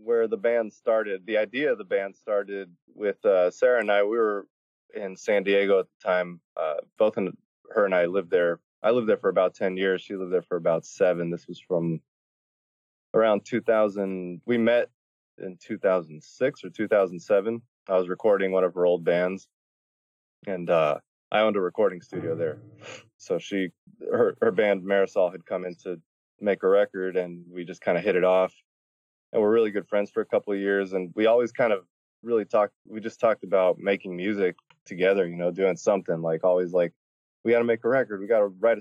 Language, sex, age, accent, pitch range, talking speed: English, male, 20-39, American, 90-115 Hz, 215 wpm